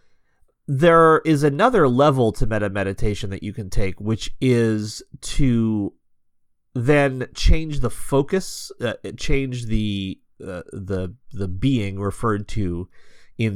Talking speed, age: 125 wpm, 30-49